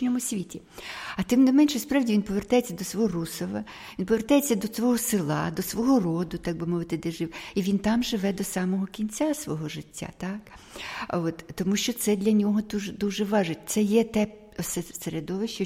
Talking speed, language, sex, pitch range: 180 wpm, Ukrainian, female, 175-230 Hz